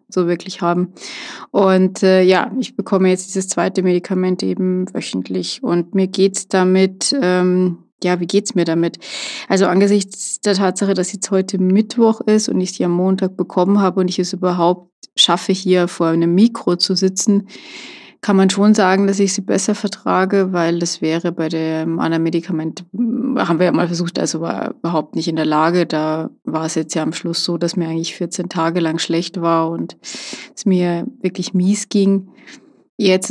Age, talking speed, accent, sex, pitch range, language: 20-39, 185 wpm, German, female, 175-200 Hz, German